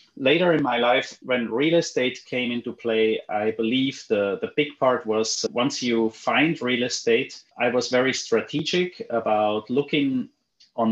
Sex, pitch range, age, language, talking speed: male, 110-145 Hz, 30-49, English, 160 wpm